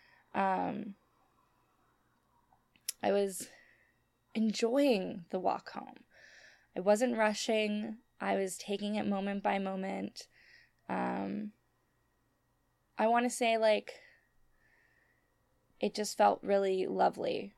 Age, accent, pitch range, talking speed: 10-29, American, 180-225 Hz, 95 wpm